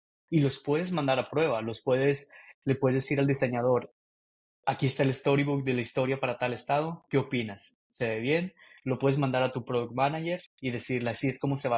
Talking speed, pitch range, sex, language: 215 wpm, 130-155 Hz, male, Spanish